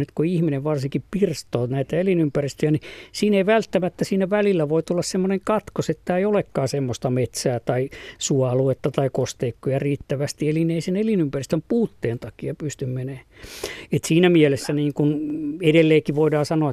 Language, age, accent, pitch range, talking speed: Finnish, 50-69, native, 130-160 Hz, 145 wpm